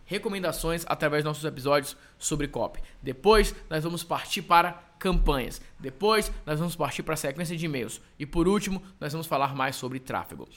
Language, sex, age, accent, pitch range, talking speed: Portuguese, male, 20-39, Brazilian, 160-215 Hz, 175 wpm